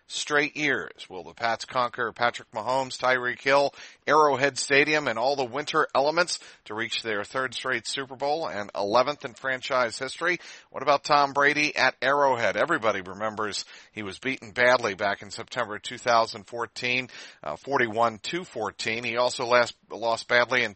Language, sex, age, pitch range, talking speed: English, male, 50-69, 115-140 Hz, 155 wpm